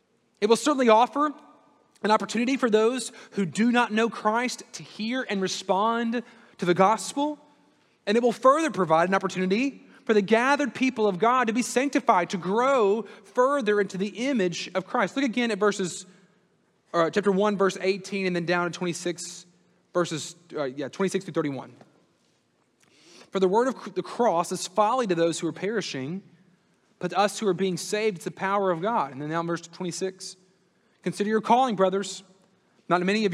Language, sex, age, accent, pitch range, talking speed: English, male, 30-49, American, 180-230 Hz, 180 wpm